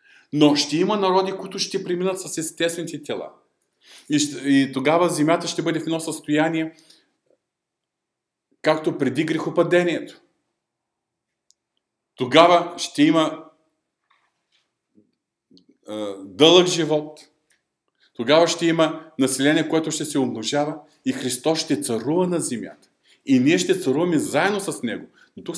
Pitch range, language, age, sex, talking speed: 120-165 Hz, Bulgarian, 40-59, male, 120 wpm